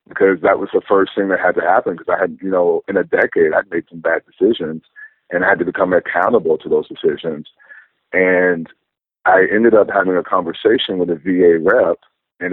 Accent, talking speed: American, 210 wpm